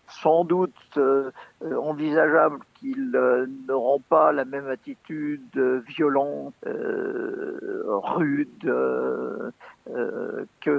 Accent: French